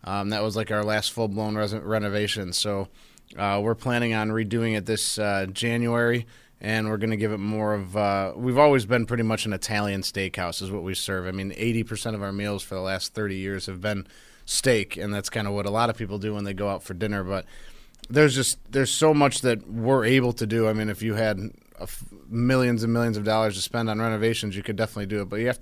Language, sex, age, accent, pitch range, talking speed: English, male, 30-49, American, 105-115 Hz, 240 wpm